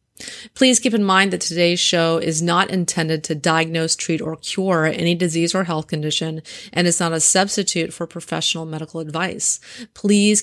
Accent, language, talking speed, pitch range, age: American, English, 175 wpm, 160-190 Hz, 30-49